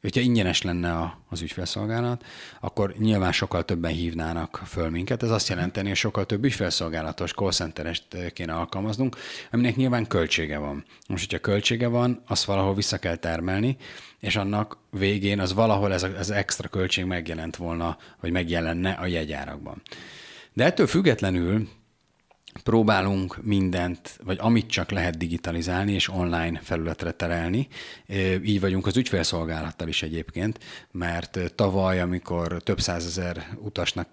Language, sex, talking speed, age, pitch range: Hungarian, male, 135 wpm, 30-49, 85-100 Hz